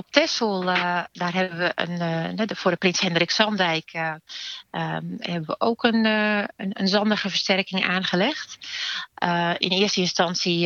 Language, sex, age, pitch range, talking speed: Dutch, female, 40-59, 170-210 Hz, 160 wpm